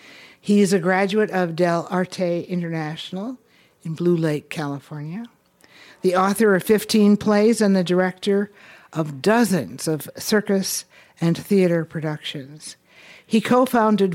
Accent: American